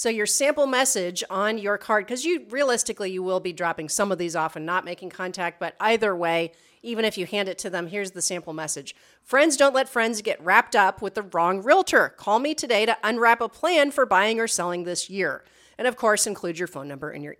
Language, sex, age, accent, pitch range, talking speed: English, female, 40-59, American, 180-240 Hz, 235 wpm